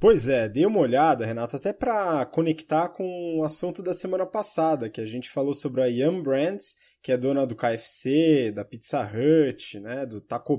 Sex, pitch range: male, 125-175 Hz